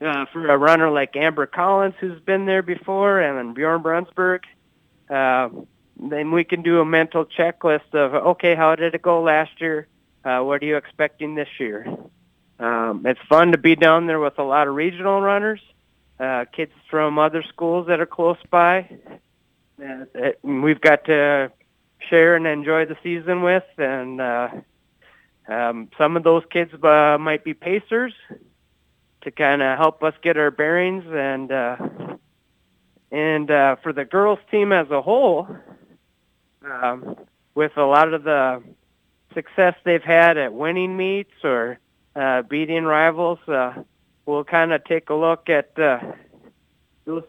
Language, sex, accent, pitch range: English, male, American, 140-170 Hz